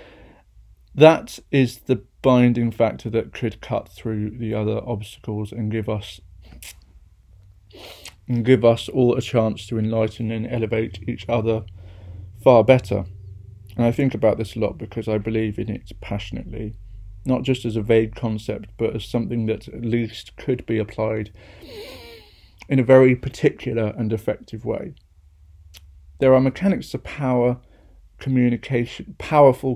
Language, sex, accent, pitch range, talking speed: English, male, British, 105-125 Hz, 145 wpm